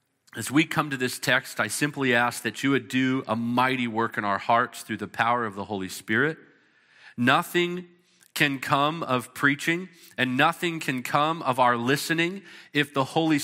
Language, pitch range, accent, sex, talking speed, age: English, 115-145 Hz, American, male, 185 wpm, 40-59